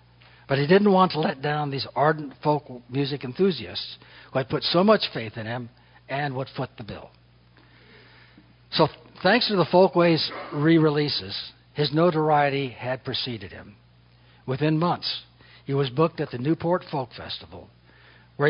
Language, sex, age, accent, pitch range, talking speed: Spanish, male, 60-79, American, 105-155 Hz, 150 wpm